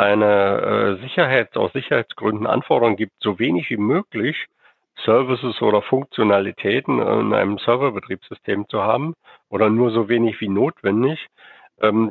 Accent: German